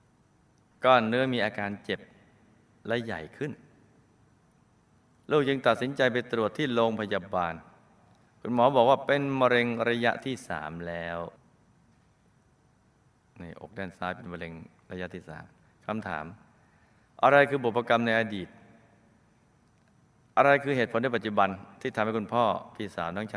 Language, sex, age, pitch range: Thai, male, 20-39, 100-125 Hz